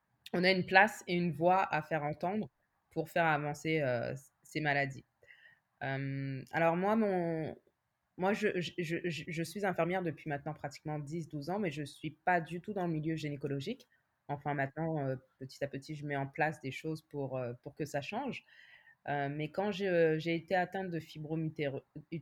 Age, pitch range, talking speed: 20-39, 150-205 Hz, 190 wpm